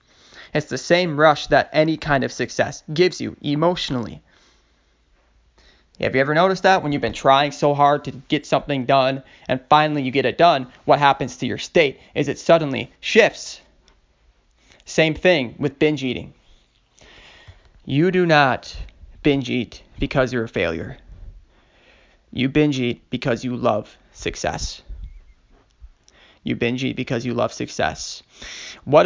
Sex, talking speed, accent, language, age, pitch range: male, 145 wpm, American, English, 20-39, 125-160 Hz